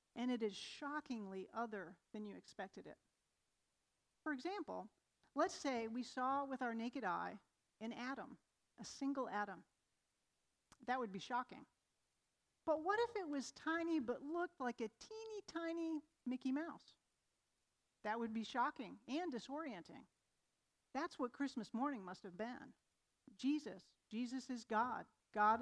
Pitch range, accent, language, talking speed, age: 225-285 Hz, American, English, 140 wpm, 40-59